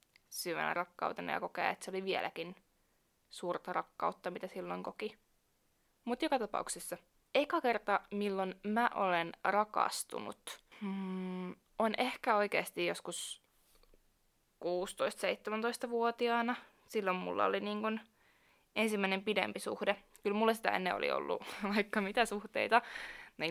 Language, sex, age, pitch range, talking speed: Finnish, female, 20-39, 175-215 Hz, 115 wpm